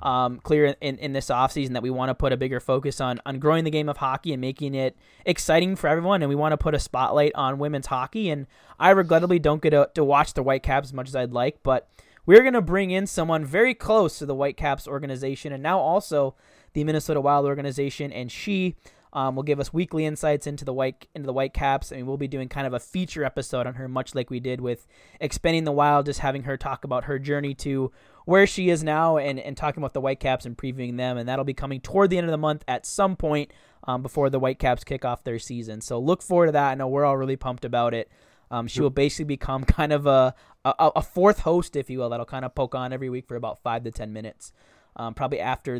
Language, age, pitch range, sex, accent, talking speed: English, 20-39, 130-150 Hz, male, American, 255 wpm